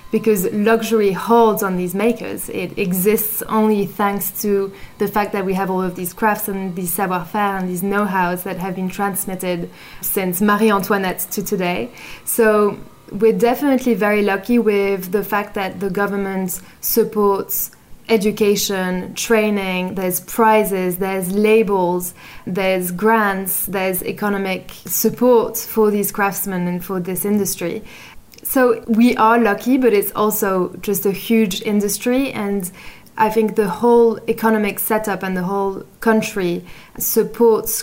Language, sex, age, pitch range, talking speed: English, female, 20-39, 190-220 Hz, 140 wpm